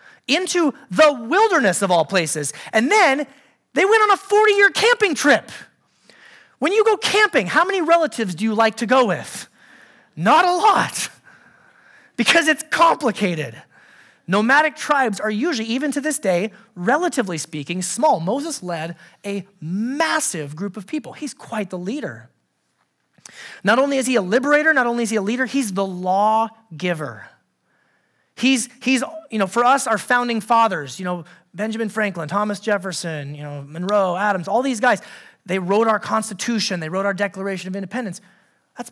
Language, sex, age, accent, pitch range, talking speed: English, male, 30-49, American, 195-285 Hz, 160 wpm